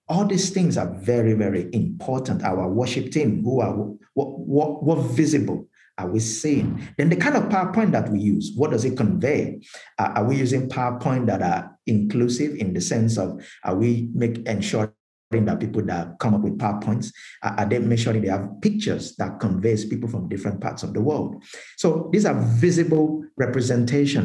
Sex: male